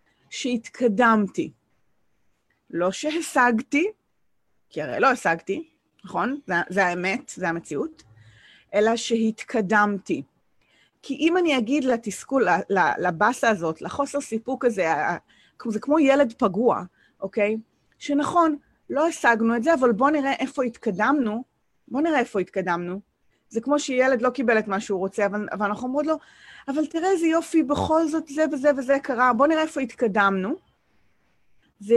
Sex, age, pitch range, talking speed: female, 30-49, 200-280 Hz, 120 wpm